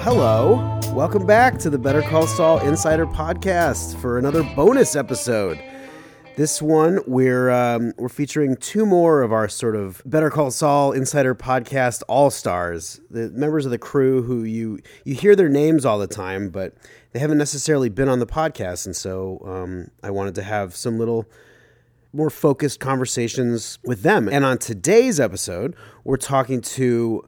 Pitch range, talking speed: 110-145 Hz, 165 wpm